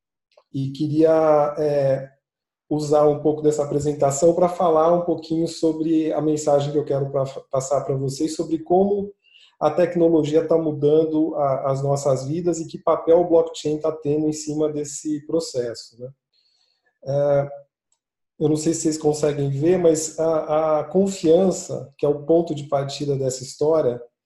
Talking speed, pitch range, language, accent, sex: 150 wpm, 140-160 Hz, Portuguese, Brazilian, male